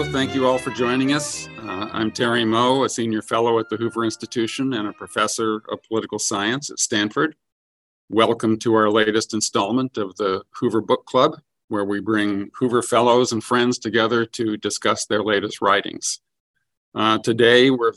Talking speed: 170 wpm